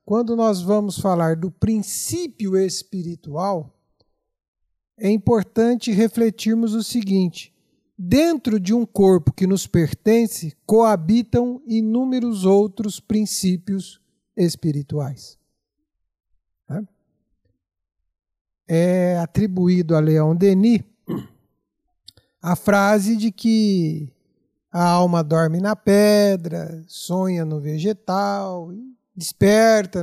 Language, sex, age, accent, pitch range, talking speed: Portuguese, male, 50-69, Brazilian, 160-210 Hz, 85 wpm